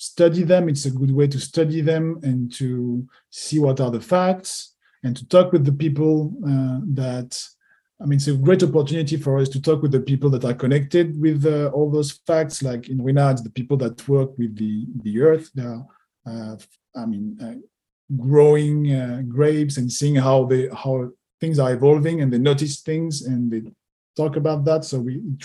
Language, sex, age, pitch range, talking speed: English, male, 40-59, 130-155 Hz, 200 wpm